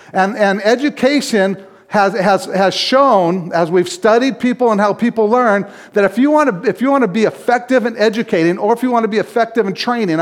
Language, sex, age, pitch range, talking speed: English, male, 50-69, 180-230 Hz, 215 wpm